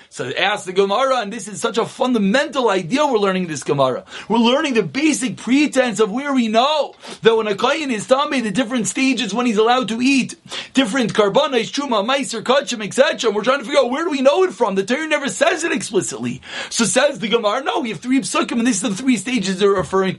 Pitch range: 210-275 Hz